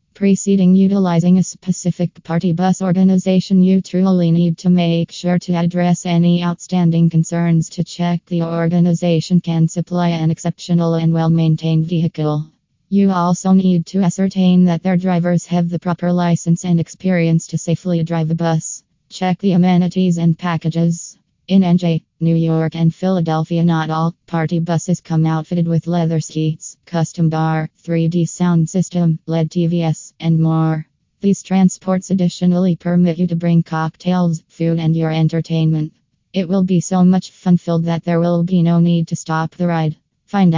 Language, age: English, 20-39